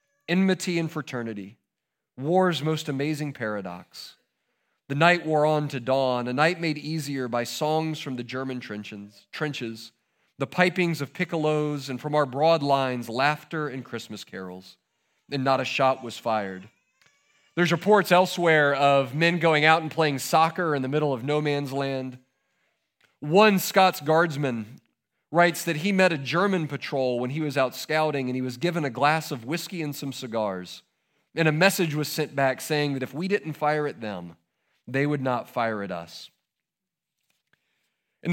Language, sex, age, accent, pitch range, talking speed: English, male, 40-59, American, 130-170 Hz, 165 wpm